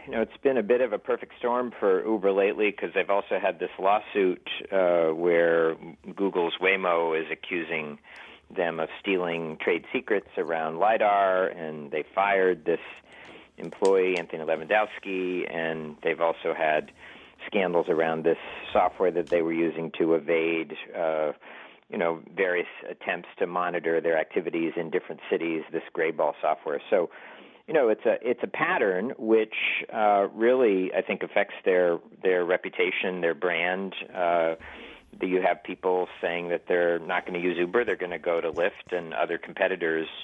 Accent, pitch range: American, 80-105 Hz